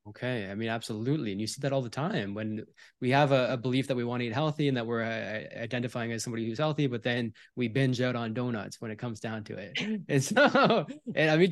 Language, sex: English, male